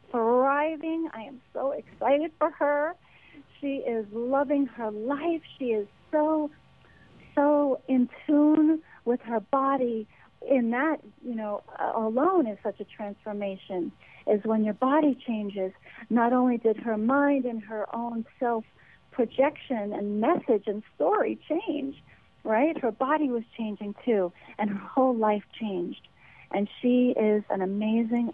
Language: English